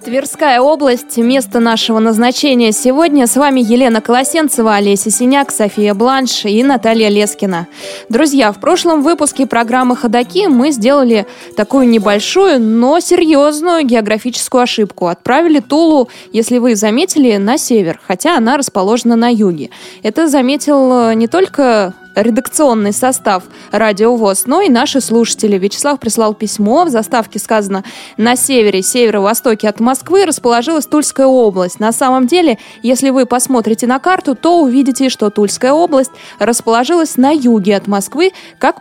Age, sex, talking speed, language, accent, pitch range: 20-39, female, 135 wpm, Russian, native, 215-280 Hz